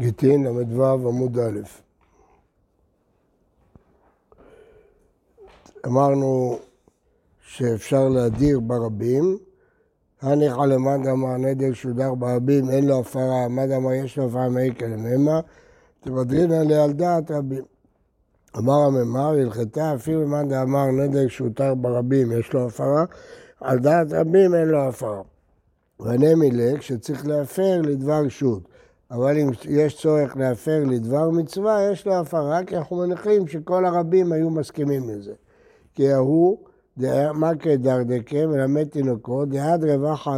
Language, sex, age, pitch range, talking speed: Hebrew, male, 60-79, 130-160 Hz, 115 wpm